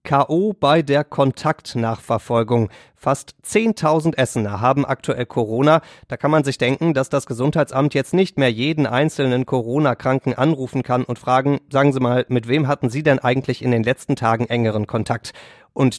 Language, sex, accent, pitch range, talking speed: German, male, German, 120-150 Hz, 165 wpm